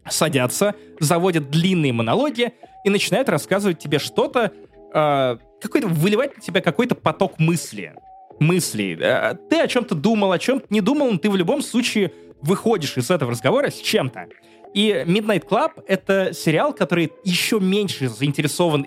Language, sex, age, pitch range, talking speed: Russian, male, 20-39, 145-220 Hz, 145 wpm